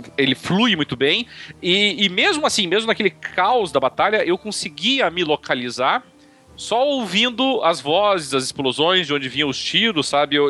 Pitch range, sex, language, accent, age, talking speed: 125-200 Hz, male, Portuguese, Brazilian, 40-59, 170 wpm